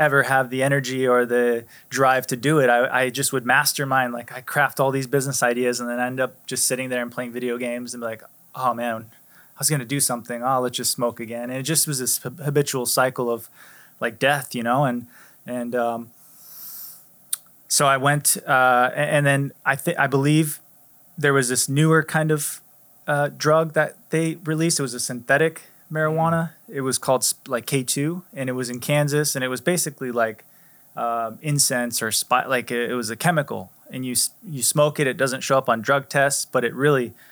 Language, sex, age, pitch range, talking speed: English, male, 20-39, 125-145 Hz, 215 wpm